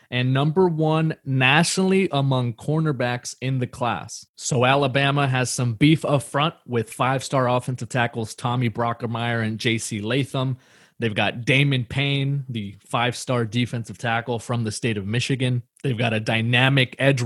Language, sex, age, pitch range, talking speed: English, male, 20-39, 120-140 Hz, 150 wpm